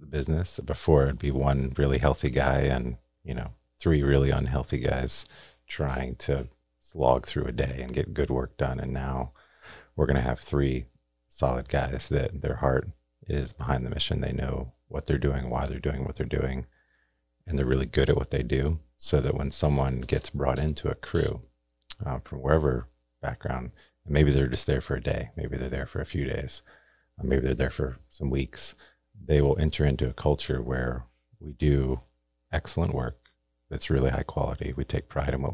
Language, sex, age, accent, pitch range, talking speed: English, male, 30-49, American, 65-75 Hz, 195 wpm